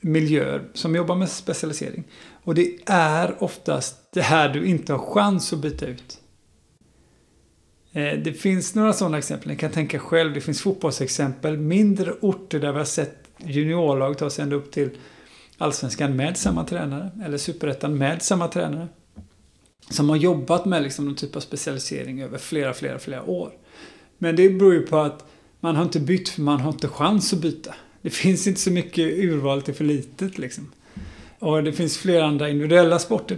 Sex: male